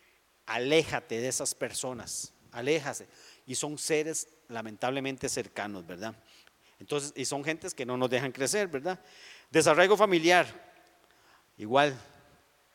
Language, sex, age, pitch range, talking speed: Spanish, male, 40-59, 130-165 Hz, 115 wpm